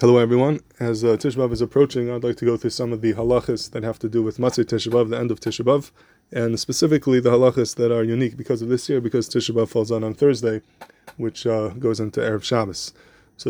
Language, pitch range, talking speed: English, 115-125 Hz, 225 wpm